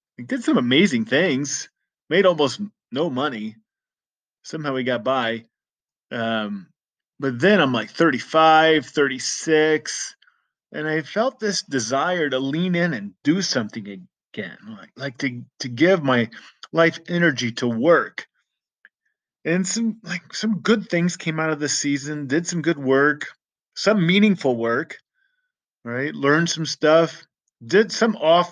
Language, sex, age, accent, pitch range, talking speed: English, male, 30-49, American, 130-175 Hz, 140 wpm